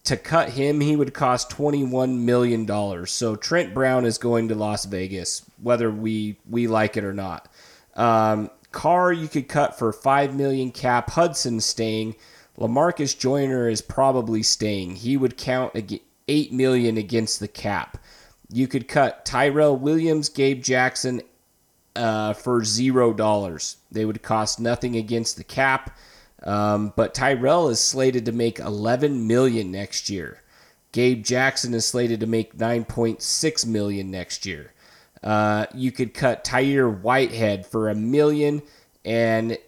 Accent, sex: American, male